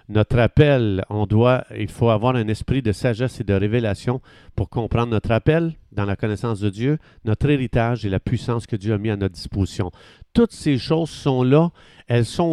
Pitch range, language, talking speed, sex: 110-135 Hz, French, 200 wpm, male